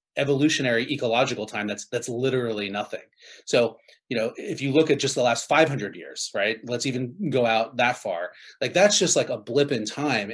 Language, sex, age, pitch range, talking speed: English, male, 30-49, 110-140 Hz, 195 wpm